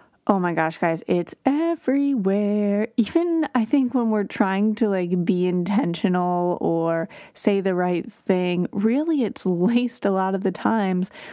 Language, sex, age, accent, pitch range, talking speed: English, female, 30-49, American, 185-240 Hz, 155 wpm